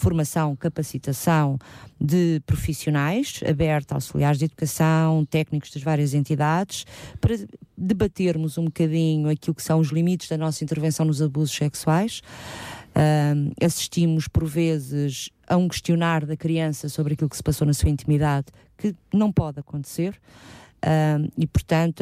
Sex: female